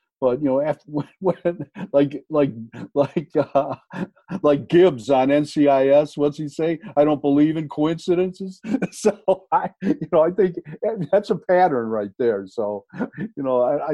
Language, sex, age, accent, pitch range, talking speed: English, male, 50-69, American, 130-160 Hz, 160 wpm